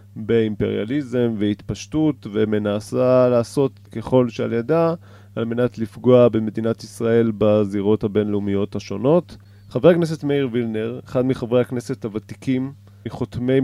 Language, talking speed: Hebrew, 105 wpm